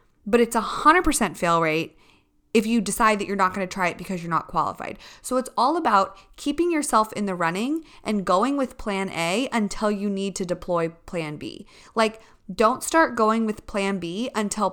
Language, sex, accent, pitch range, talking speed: English, female, American, 185-250 Hz, 195 wpm